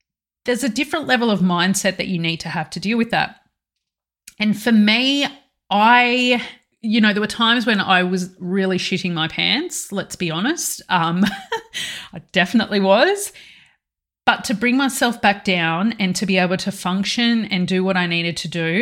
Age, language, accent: 30-49, English, Australian